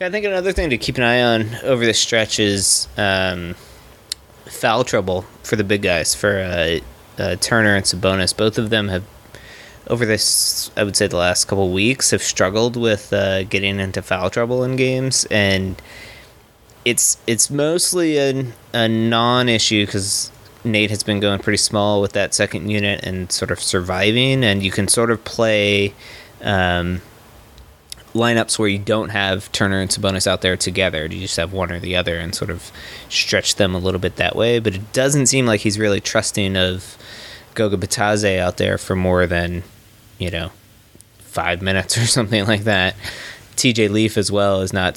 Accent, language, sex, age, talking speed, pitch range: American, English, male, 20-39, 185 wpm, 95-110 Hz